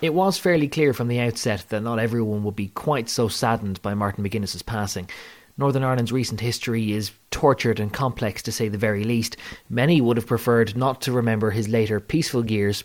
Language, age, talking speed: English, 30-49, 200 wpm